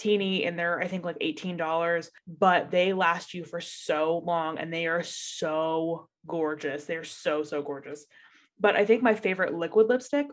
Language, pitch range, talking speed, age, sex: English, 165-210 Hz, 185 wpm, 20-39, female